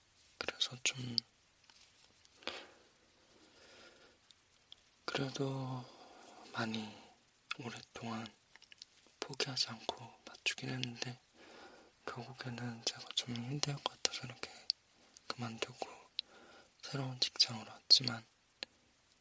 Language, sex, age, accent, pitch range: Korean, male, 20-39, native, 115-130 Hz